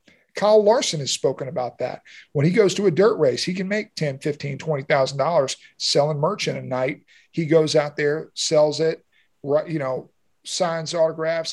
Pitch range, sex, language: 150-185 Hz, male, English